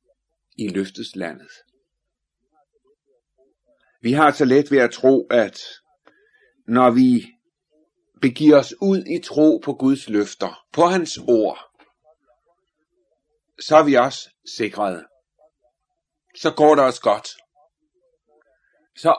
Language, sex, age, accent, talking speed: Danish, male, 60-79, native, 110 wpm